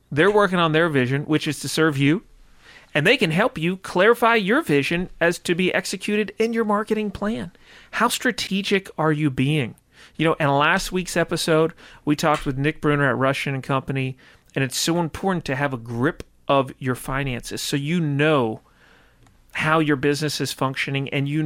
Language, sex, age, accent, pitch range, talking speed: English, male, 40-59, American, 130-155 Hz, 185 wpm